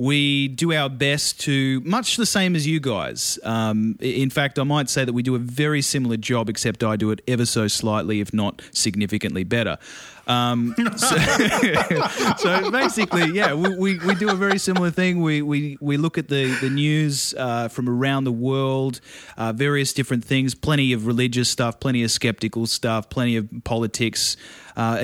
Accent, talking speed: Australian, 185 wpm